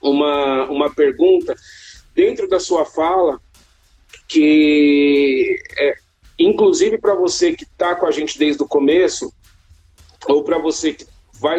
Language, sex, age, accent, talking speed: Portuguese, male, 40-59, Brazilian, 125 wpm